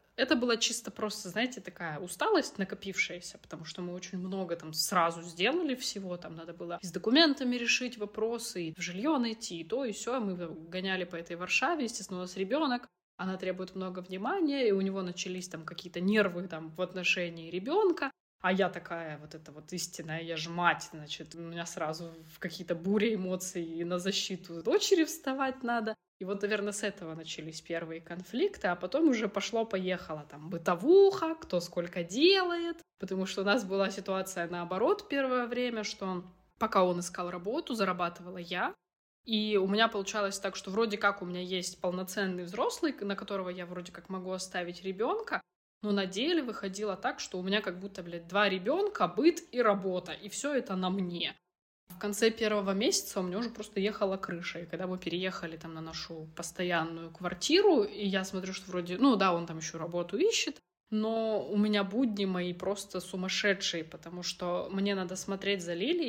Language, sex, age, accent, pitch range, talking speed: Russian, female, 20-39, native, 175-215 Hz, 185 wpm